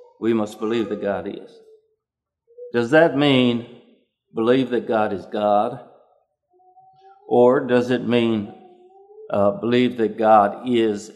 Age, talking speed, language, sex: 60-79, 125 wpm, English, male